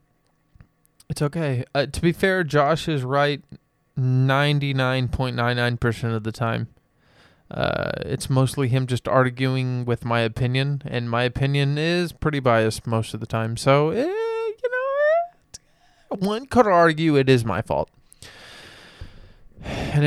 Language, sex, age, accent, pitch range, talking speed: English, male, 20-39, American, 115-140 Hz, 135 wpm